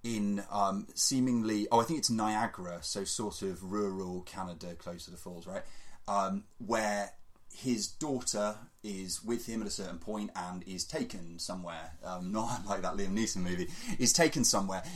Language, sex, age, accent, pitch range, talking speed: English, male, 30-49, British, 90-115 Hz, 175 wpm